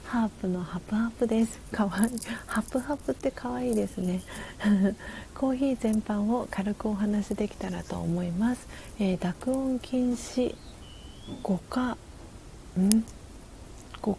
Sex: female